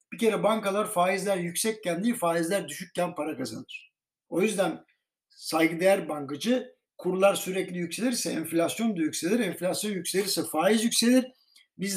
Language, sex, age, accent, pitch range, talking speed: Turkish, male, 60-79, native, 175-230 Hz, 125 wpm